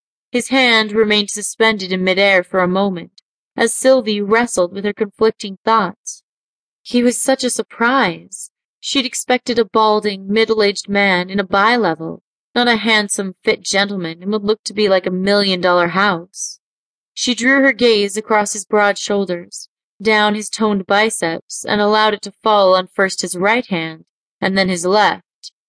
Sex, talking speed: female, 165 wpm